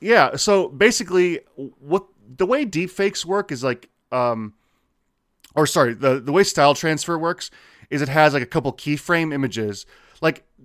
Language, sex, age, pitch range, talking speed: English, male, 20-39, 125-165 Hz, 160 wpm